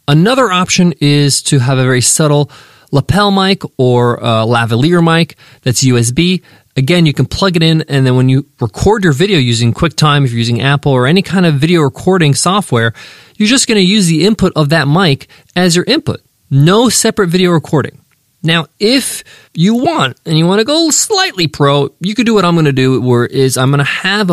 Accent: American